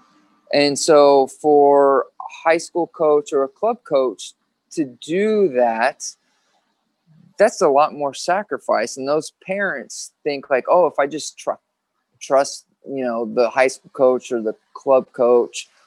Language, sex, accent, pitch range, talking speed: English, male, American, 120-140 Hz, 150 wpm